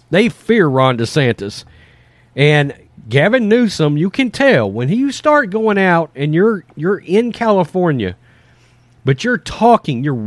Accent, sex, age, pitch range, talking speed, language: American, male, 40-59, 125-185 Hz, 140 wpm, English